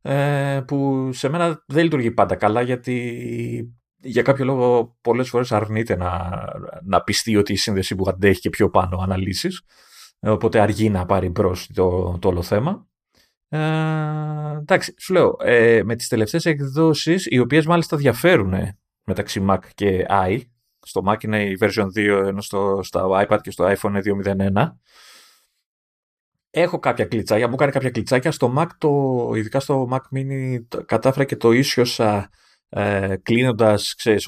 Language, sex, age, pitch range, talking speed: Greek, male, 30-49, 100-135 Hz, 145 wpm